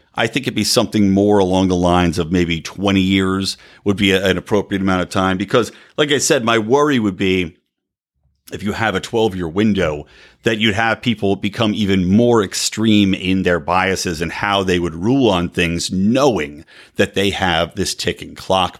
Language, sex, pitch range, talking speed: English, male, 90-110 Hz, 190 wpm